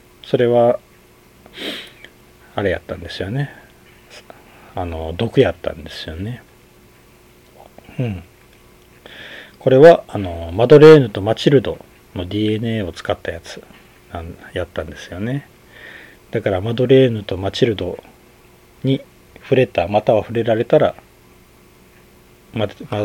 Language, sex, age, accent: Japanese, male, 40-59, native